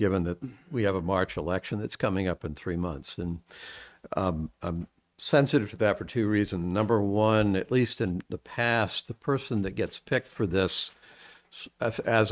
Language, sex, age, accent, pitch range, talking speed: English, male, 60-79, American, 90-110 Hz, 180 wpm